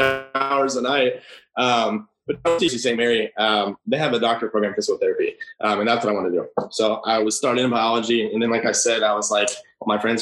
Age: 20-39